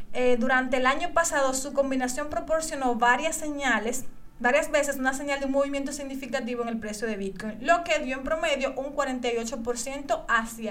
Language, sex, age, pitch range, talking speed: Spanish, female, 30-49, 240-285 Hz, 175 wpm